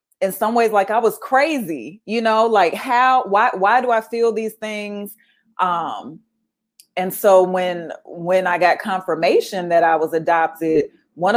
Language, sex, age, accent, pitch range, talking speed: English, female, 30-49, American, 175-230 Hz, 165 wpm